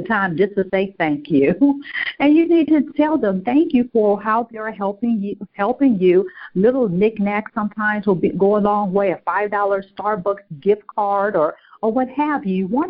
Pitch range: 190-250 Hz